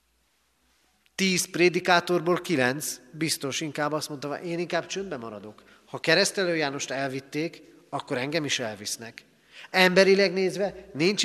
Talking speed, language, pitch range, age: 125 wpm, Hungarian, 115-165 Hz, 40-59